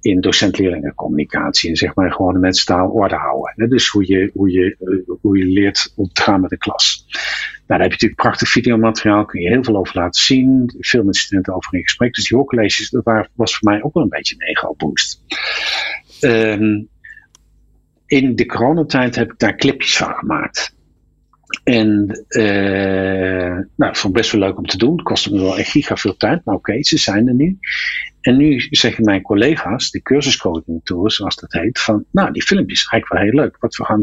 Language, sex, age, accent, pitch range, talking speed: Dutch, male, 50-69, Dutch, 95-130 Hz, 210 wpm